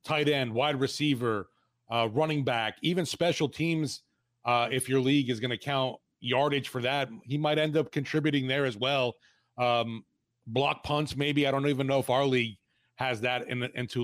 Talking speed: 190 wpm